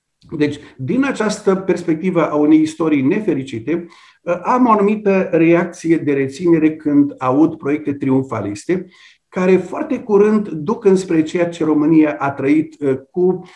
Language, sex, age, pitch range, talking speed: Romanian, male, 50-69, 135-175 Hz, 130 wpm